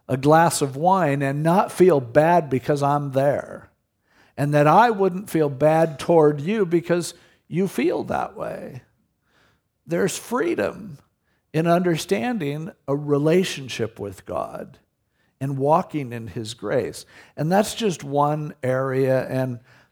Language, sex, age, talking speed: English, male, 50-69, 130 wpm